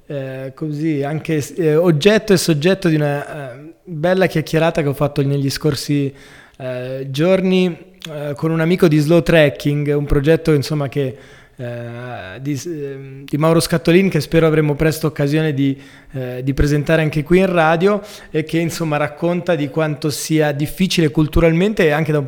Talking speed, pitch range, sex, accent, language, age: 165 wpm, 140-165 Hz, male, native, Italian, 20-39